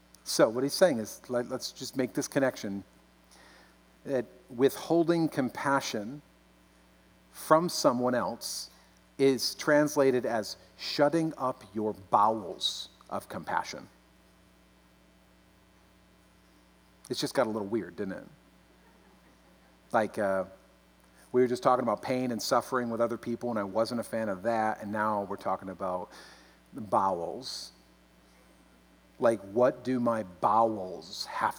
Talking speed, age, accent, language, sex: 125 wpm, 50-69, American, English, male